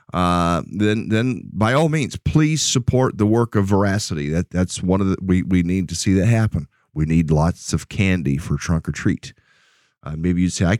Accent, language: American, English